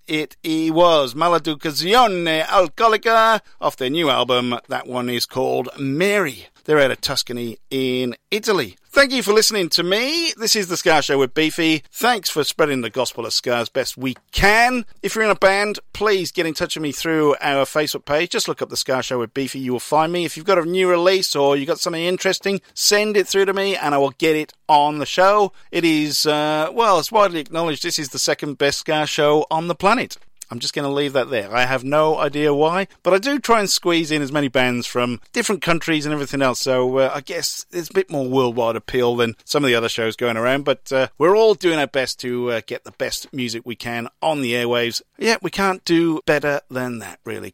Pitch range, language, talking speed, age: 135-190 Hz, English, 230 wpm, 50-69